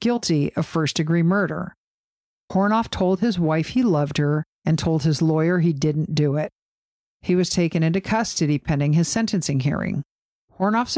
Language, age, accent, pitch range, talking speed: English, 50-69, American, 155-185 Hz, 160 wpm